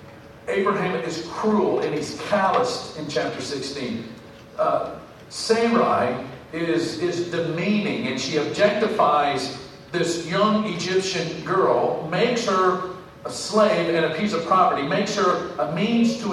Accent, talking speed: American, 130 wpm